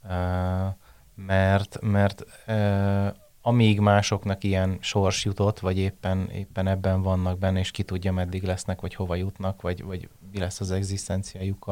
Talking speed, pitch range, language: 150 wpm, 95-110 Hz, Hungarian